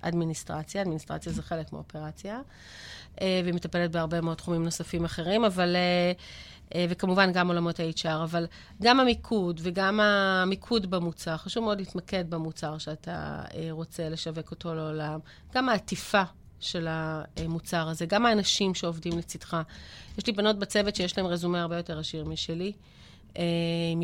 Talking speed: 130 wpm